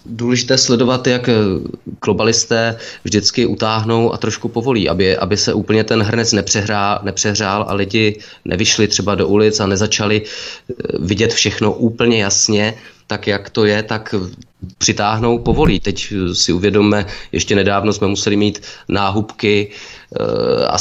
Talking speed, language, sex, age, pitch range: 135 wpm, Czech, male, 20-39, 100-110 Hz